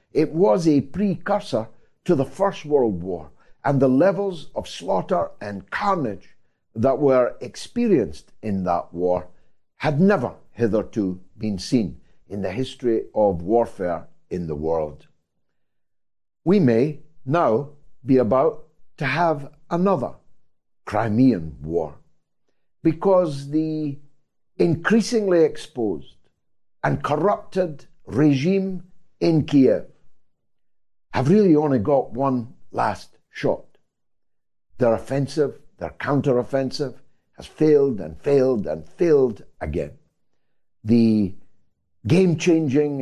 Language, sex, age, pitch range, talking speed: English, male, 60-79, 115-160 Hz, 100 wpm